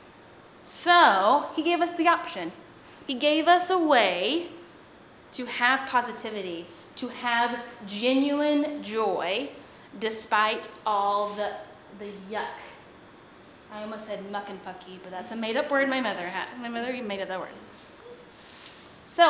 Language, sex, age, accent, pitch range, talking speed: English, female, 10-29, American, 215-280 Hz, 140 wpm